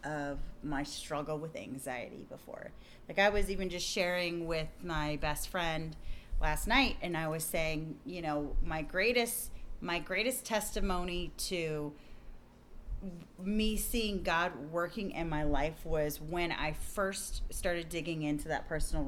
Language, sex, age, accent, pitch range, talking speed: English, female, 30-49, American, 155-200 Hz, 145 wpm